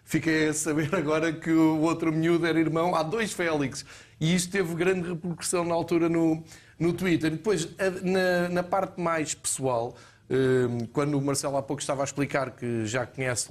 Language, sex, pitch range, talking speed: Portuguese, male, 140-180 Hz, 180 wpm